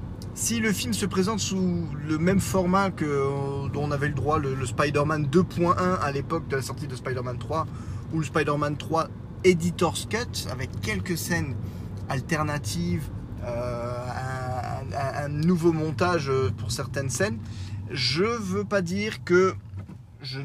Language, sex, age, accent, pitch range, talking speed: French, male, 20-39, French, 115-145 Hz, 155 wpm